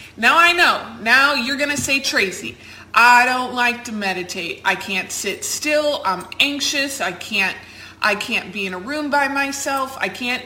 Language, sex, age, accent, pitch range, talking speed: English, female, 20-39, American, 170-250 Hz, 185 wpm